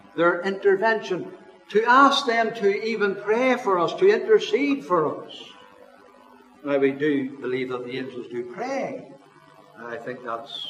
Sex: male